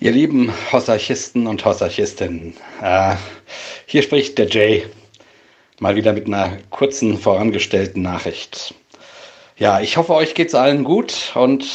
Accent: German